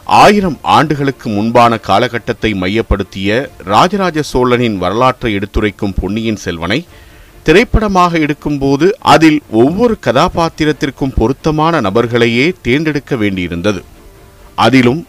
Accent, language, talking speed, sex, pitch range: native, Tamil, 85 wpm, male, 105-155 Hz